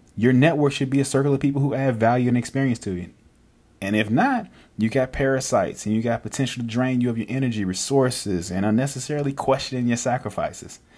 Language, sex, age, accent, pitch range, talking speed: English, male, 20-39, American, 110-135 Hz, 200 wpm